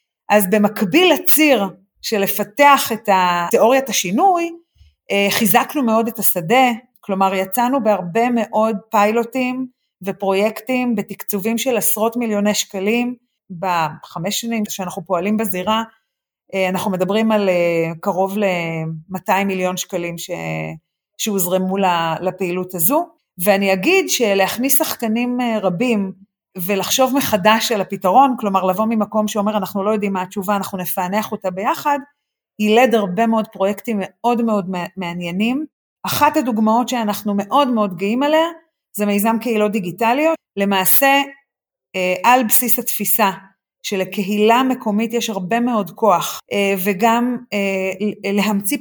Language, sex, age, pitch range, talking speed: Hebrew, female, 30-49, 195-240 Hz, 110 wpm